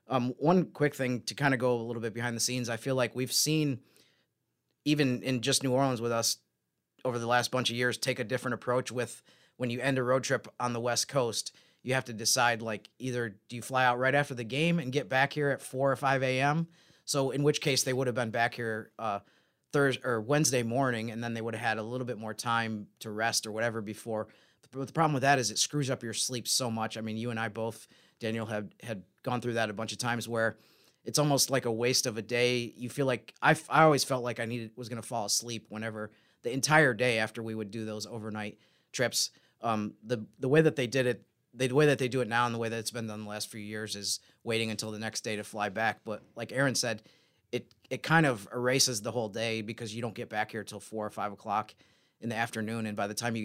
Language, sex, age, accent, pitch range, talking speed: English, male, 30-49, American, 110-130 Hz, 260 wpm